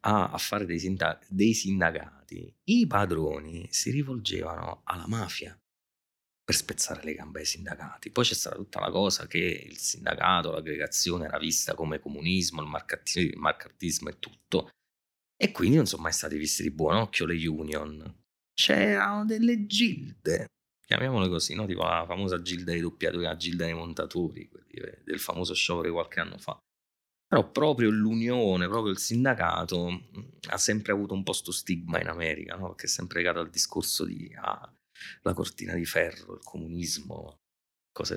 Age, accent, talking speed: 30-49, native, 160 wpm